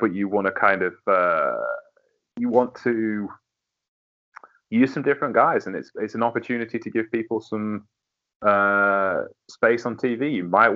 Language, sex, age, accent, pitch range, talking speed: English, male, 30-49, British, 105-135 Hz, 160 wpm